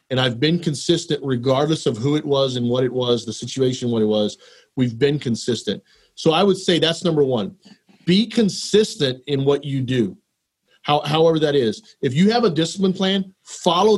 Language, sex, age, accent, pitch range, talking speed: English, male, 40-59, American, 130-170 Hz, 190 wpm